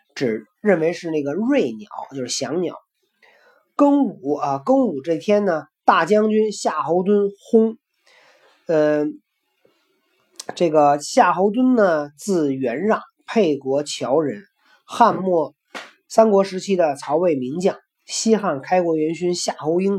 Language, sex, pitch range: Chinese, male, 155-215 Hz